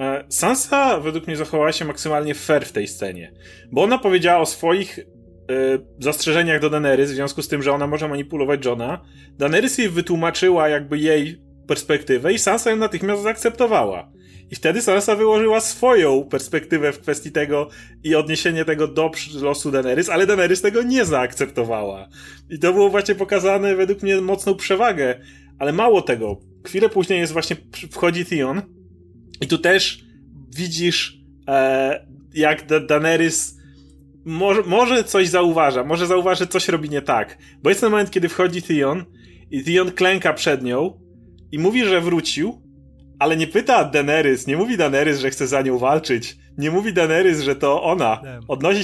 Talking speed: 160 wpm